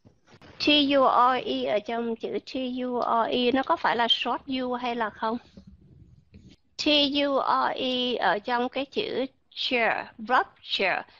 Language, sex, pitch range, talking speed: Vietnamese, female, 235-285 Hz, 115 wpm